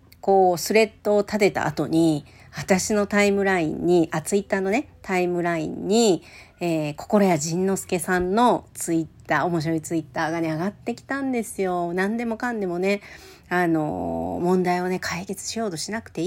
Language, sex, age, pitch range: Japanese, female, 40-59, 160-210 Hz